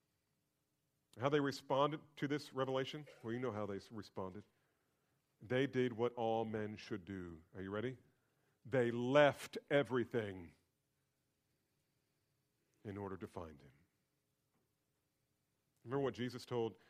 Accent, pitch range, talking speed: American, 105-140 Hz, 120 wpm